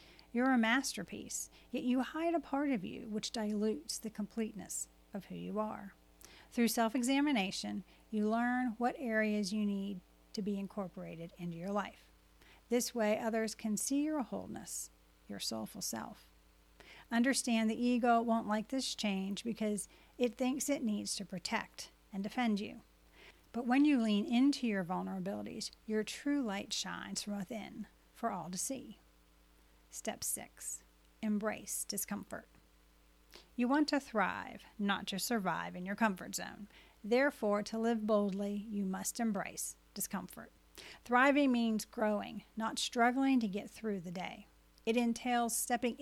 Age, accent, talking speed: 40-59, American, 145 wpm